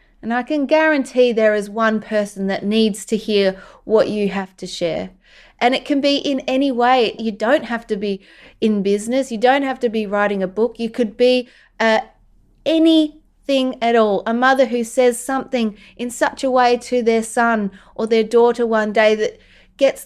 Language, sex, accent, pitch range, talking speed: English, female, Australian, 220-255 Hz, 195 wpm